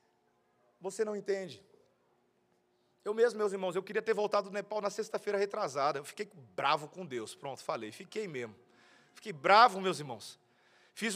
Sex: male